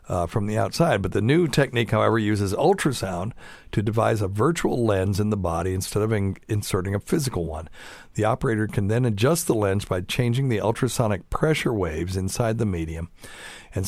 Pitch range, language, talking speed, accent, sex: 95-120 Hz, English, 180 wpm, American, male